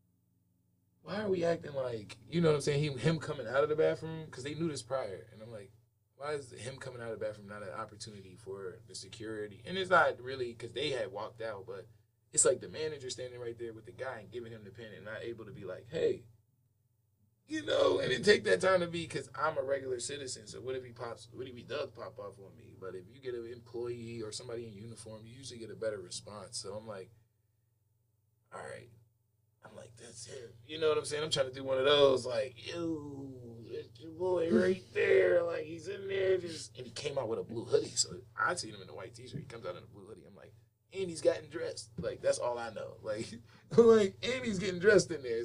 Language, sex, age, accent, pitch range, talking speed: English, male, 20-39, American, 110-145 Hz, 245 wpm